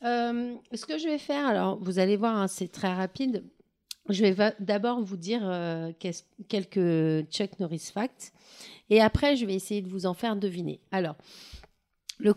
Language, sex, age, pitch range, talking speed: French, female, 40-59, 160-210 Hz, 180 wpm